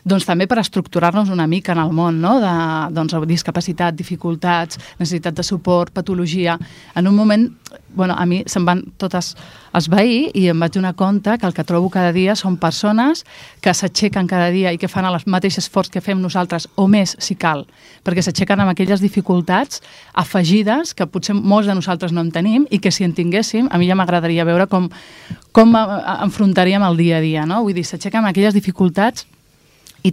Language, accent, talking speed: Portuguese, Spanish, 190 wpm